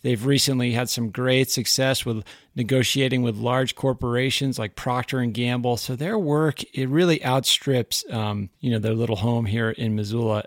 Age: 40-59